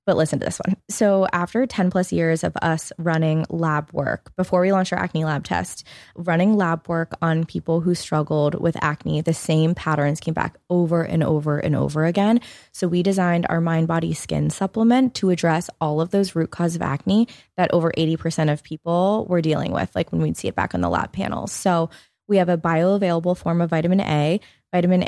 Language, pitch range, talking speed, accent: English, 160-185 Hz, 210 wpm, American